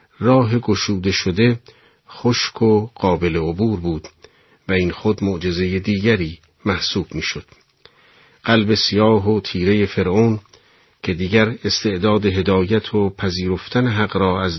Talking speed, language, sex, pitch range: 120 wpm, Persian, male, 95-115 Hz